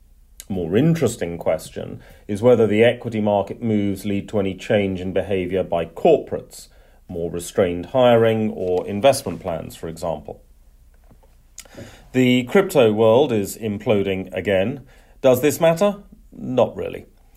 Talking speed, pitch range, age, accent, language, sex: 130 wpm, 95-120 Hz, 40-59, British, English, male